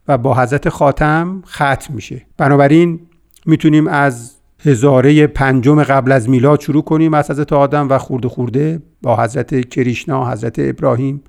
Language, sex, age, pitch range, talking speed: Persian, male, 50-69, 135-170 Hz, 140 wpm